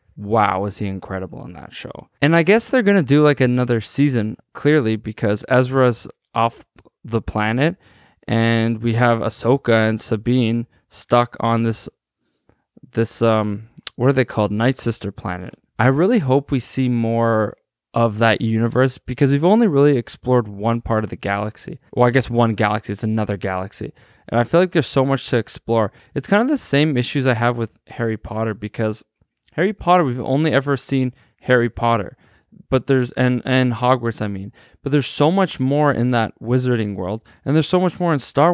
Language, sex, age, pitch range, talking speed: English, male, 20-39, 110-140 Hz, 185 wpm